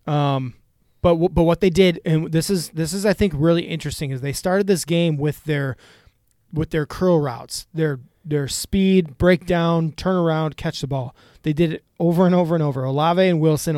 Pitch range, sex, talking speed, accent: 145-175 Hz, male, 205 wpm, American